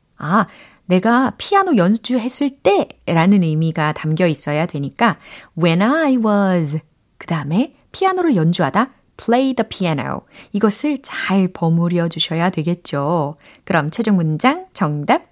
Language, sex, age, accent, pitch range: Korean, female, 30-49, native, 165-260 Hz